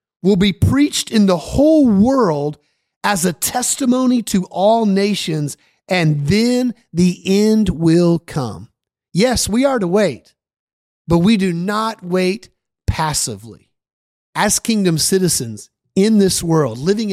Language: English